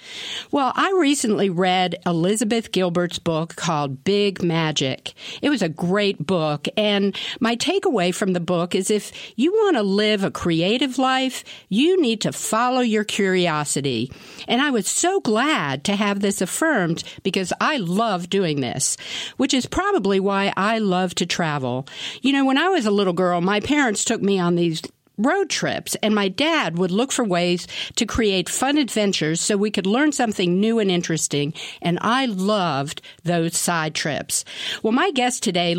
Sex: female